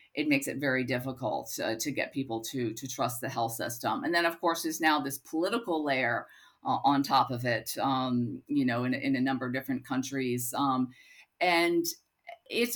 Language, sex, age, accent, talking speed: English, female, 50-69, American, 200 wpm